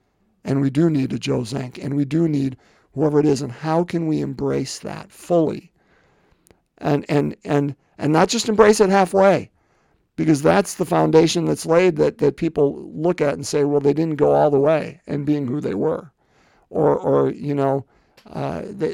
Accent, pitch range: American, 140-175 Hz